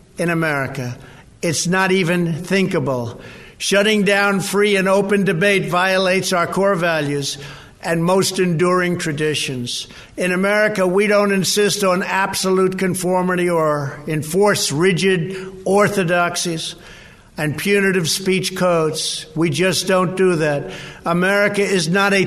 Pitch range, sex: 165-200 Hz, male